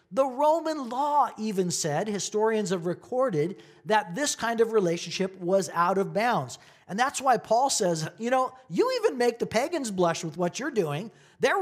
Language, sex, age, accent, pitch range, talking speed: English, male, 40-59, American, 180-240 Hz, 180 wpm